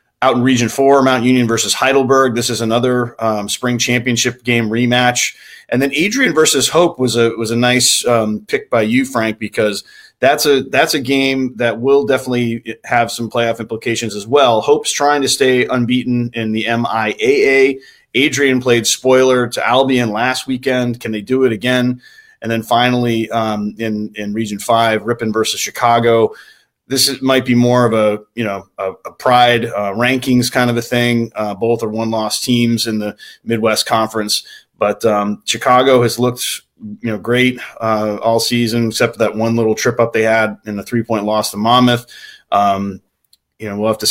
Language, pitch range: English, 110-125 Hz